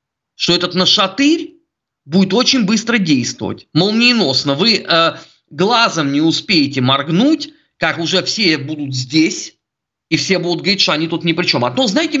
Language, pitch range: Russian, 155-245 Hz